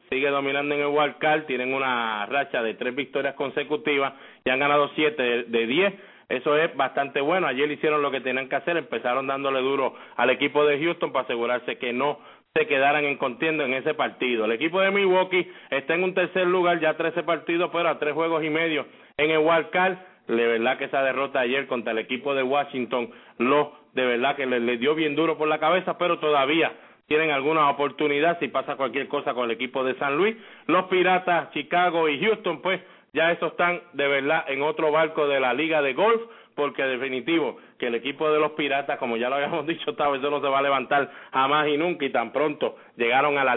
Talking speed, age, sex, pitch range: 215 wpm, 30-49, male, 135-160 Hz